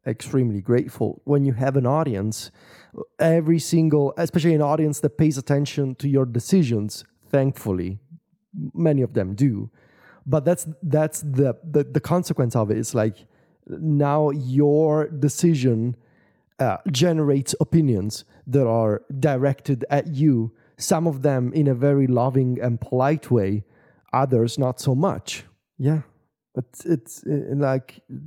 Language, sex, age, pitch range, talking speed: English, male, 30-49, 125-160 Hz, 135 wpm